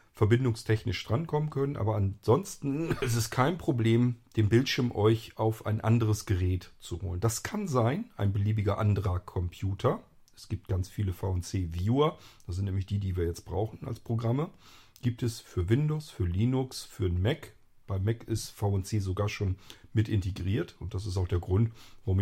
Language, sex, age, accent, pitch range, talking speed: German, male, 40-59, German, 95-120 Hz, 170 wpm